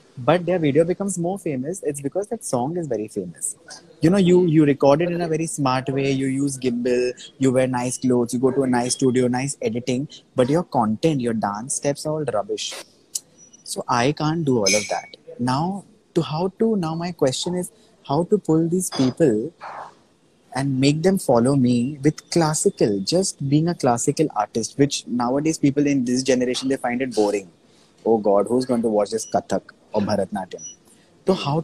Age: 20-39